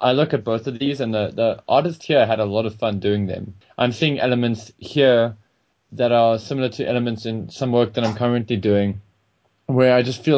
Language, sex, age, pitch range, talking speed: English, male, 20-39, 100-125 Hz, 220 wpm